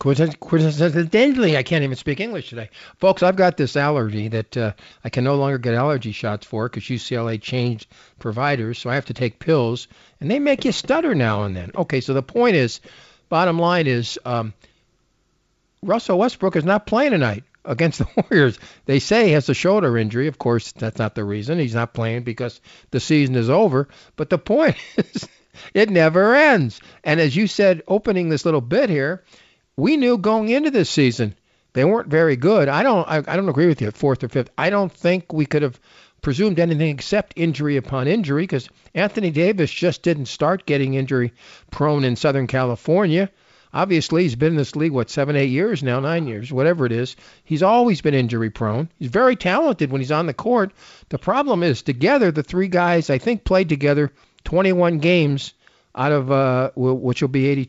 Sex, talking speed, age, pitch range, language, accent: male, 195 wpm, 50-69, 125-175 Hz, English, American